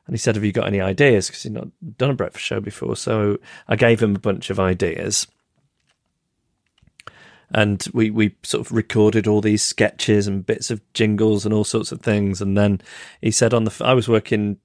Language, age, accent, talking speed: English, 40-59, British, 205 wpm